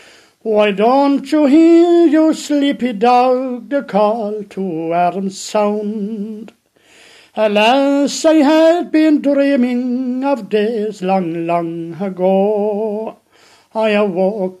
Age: 60-79